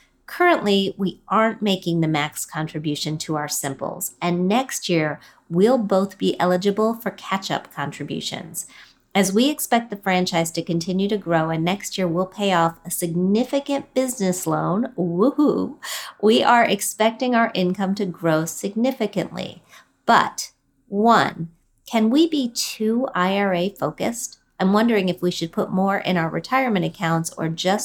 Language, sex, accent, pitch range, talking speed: English, female, American, 170-220 Hz, 145 wpm